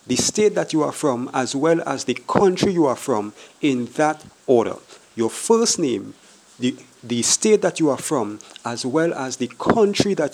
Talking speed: 190 wpm